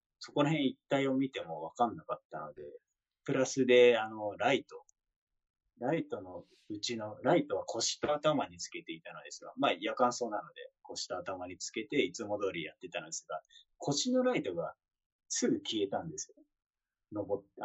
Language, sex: Japanese, male